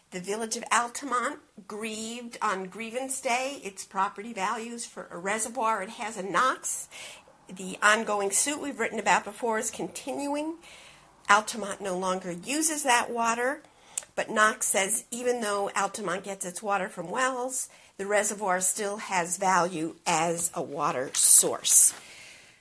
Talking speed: 140 wpm